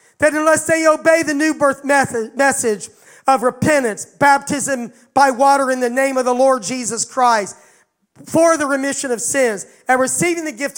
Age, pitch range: 40-59, 220-275 Hz